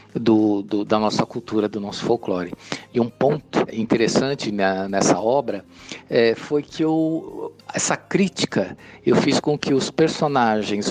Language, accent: Portuguese, Brazilian